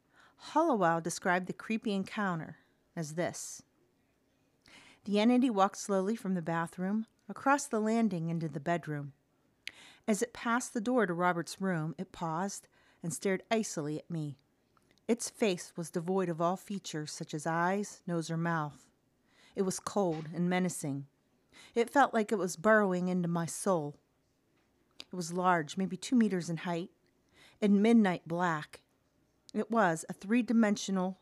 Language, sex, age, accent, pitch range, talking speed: English, female, 40-59, American, 165-210 Hz, 150 wpm